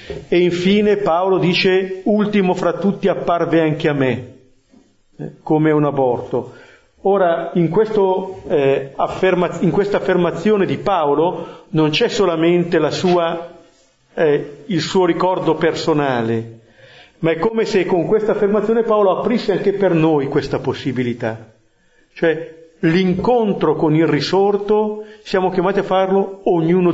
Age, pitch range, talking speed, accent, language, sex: 50-69, 145-190 Hz, 130 wpm, native, Italian, male